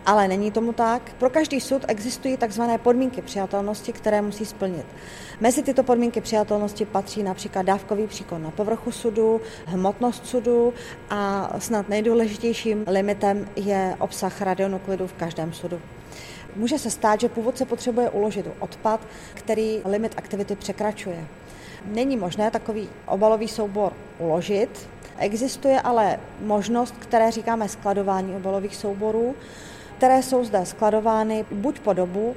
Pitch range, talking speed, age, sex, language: 195-230 Hz, 130 wpm, 30-49, female, Czech